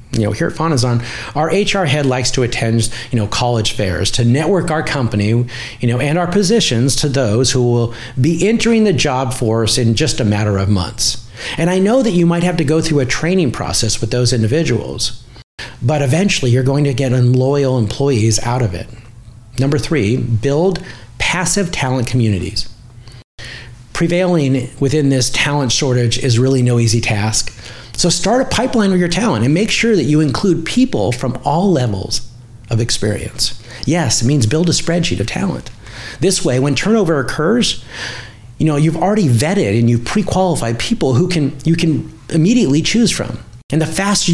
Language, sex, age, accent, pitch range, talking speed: English, male, 40-59, American, 115-160 Hz, 180 wpm